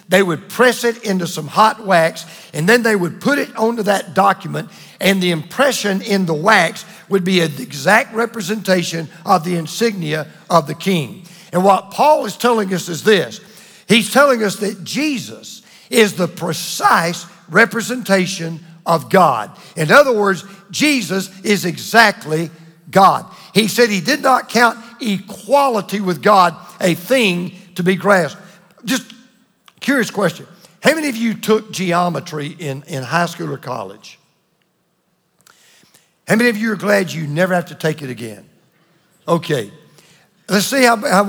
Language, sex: English, male